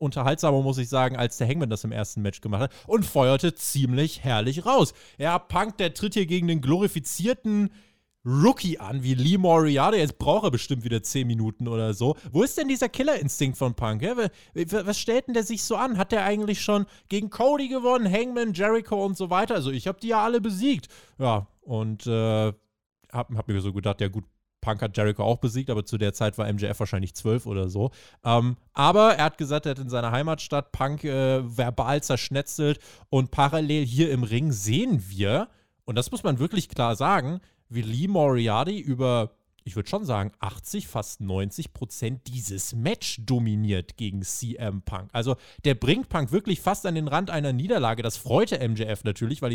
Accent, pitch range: German, 115-175 Hz